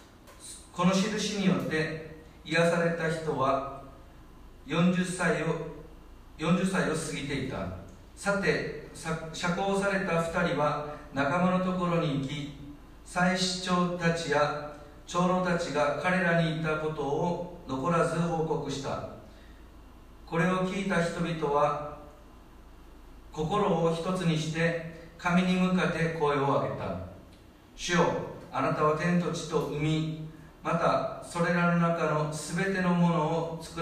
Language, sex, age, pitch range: Japanese, male, 50-69, 145-170 Hz